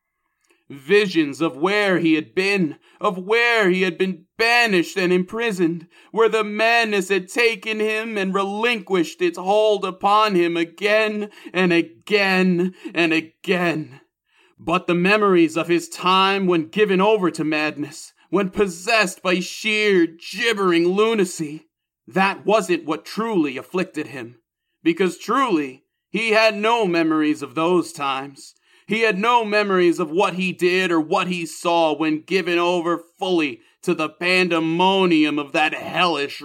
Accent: American